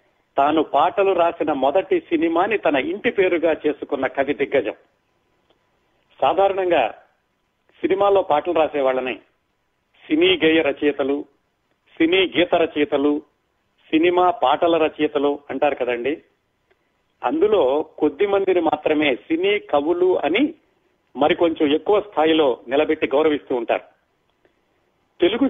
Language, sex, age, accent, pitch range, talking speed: Telugu, male, 40-59, native, 145-215 Hz, 95 wpm